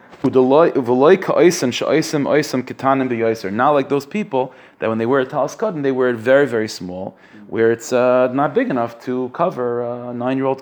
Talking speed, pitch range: 145 wpm, 110-130 Hz